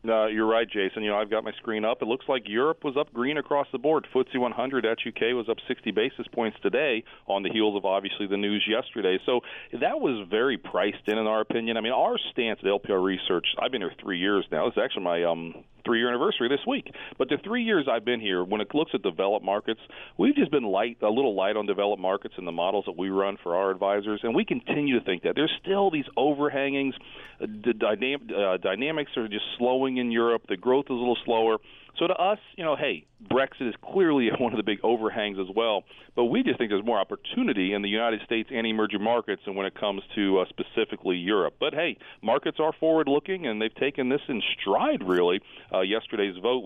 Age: 40-59